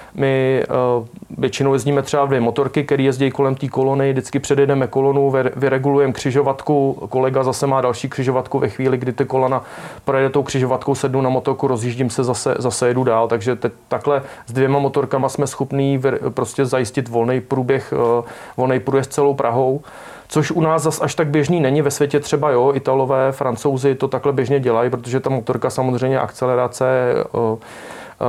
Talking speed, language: 170 wpm, Czech